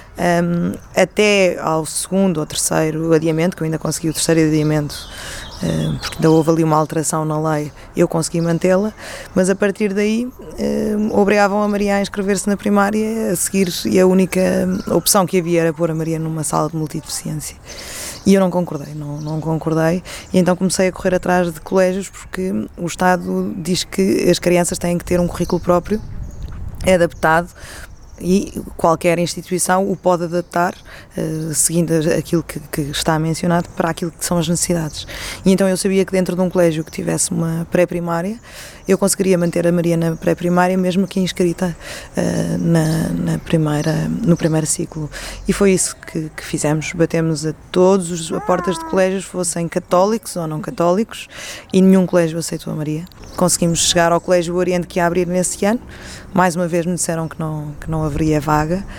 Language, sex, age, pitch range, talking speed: Portuguese, female, 20-39, 160-185 Hz, 180 wpm